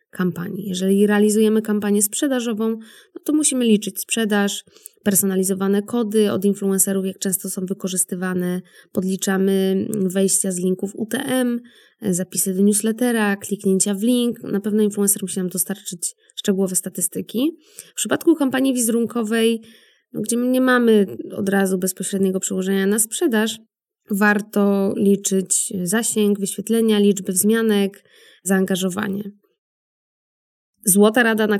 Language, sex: Polish, female